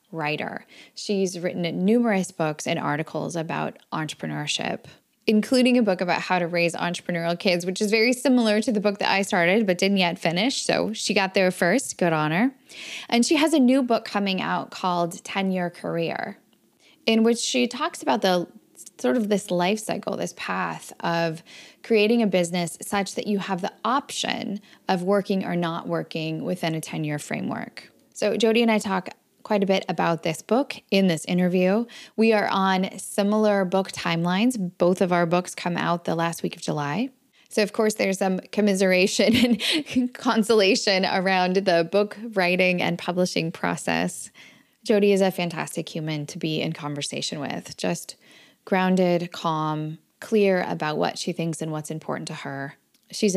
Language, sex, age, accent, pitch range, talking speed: English, female, 10-29, American, 170-220 Hz, 170 wpm